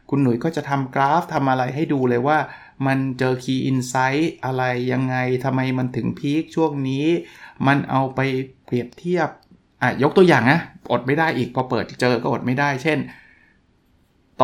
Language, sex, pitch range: Thai, male, 120-145 Hz